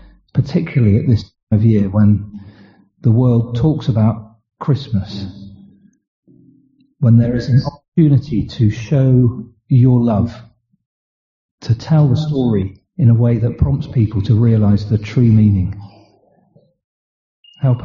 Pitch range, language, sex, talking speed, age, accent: 100-120 Hz, English, male, 125 wpm, 40-59, British